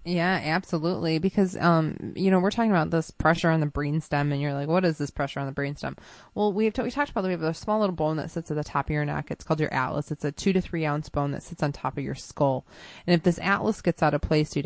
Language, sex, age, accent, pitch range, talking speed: English, female, 20-39, American, 150-190 Hz, 295 wpm